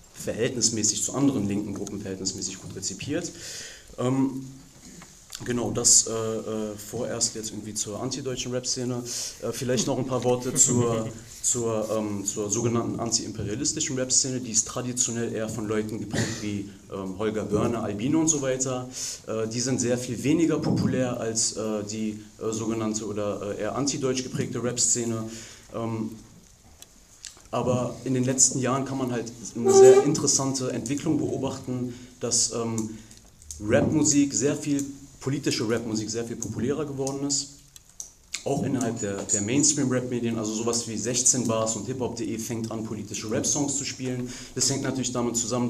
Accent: German